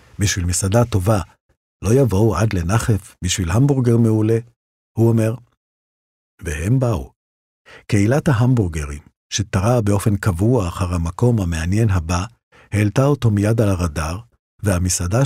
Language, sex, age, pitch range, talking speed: Hebrew, male, 50-69, 90-115 Hz, 115 wpm